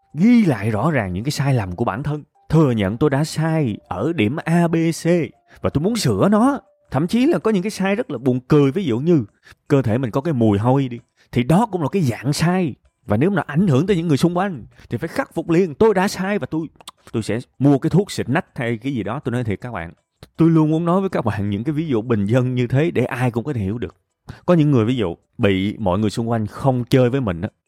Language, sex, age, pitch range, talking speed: Vietnamese, male, 20-39, 115-175 Hz, 280 wpm